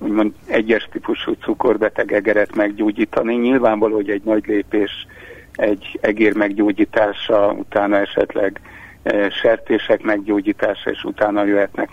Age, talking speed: 60-79, 100 wpm